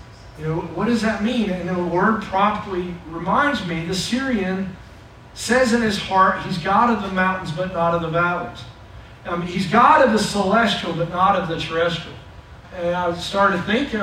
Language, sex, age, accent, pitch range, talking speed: English, male, 50-69, American, 175-225 Hz, 185 wpm